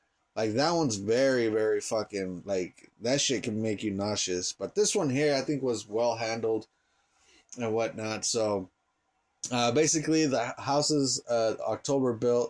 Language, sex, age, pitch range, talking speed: English, male, 20-39, 110-135 Hz, 155 wpm